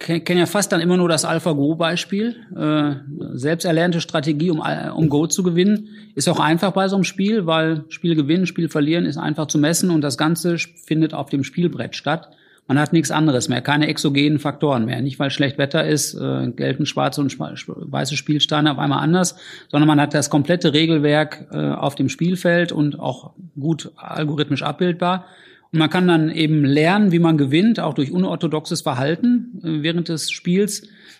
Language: German